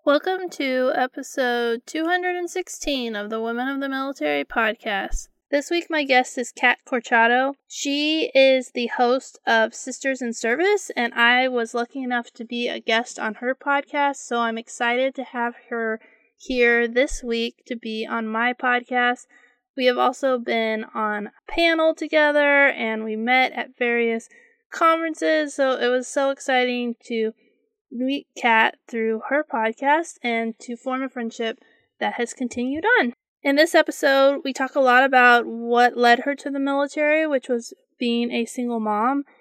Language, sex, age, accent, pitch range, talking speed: English, female, 20-39, American, 235-285 Hz, 160 wpm